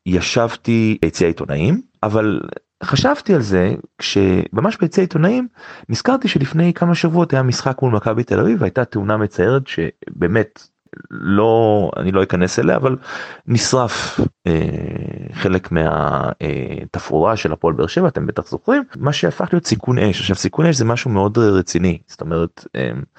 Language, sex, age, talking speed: Hebrew, male, 30-49, 145 wpm